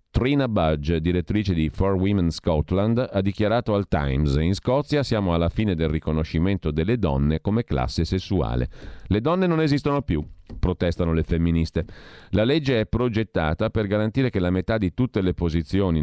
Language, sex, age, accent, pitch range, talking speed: Italian, male, 40-59, native, 80-110 Hz, 165 wpm